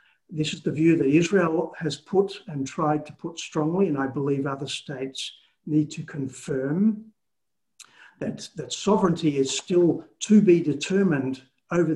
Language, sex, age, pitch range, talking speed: English, male, 60-79, 140-190 Hz, 150 wpm